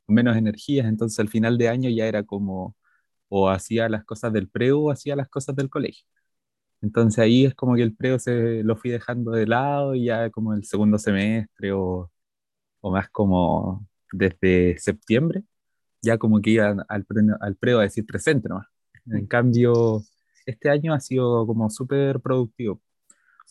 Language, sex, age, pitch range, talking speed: Spanish, male, 20-39, 105-125 Hz, 170 wpm